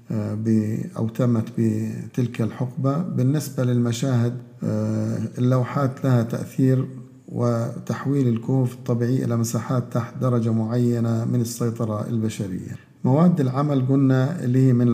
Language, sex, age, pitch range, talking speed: Arabic, male, 50-69, 115-130 Hz, 105 wpm